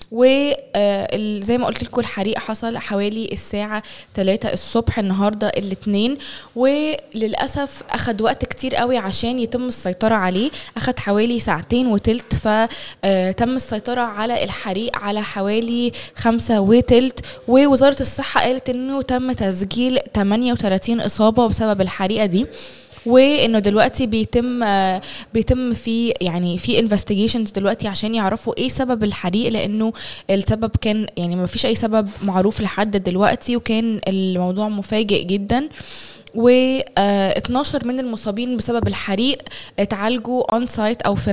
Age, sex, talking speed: 20-39, female, 125 wpm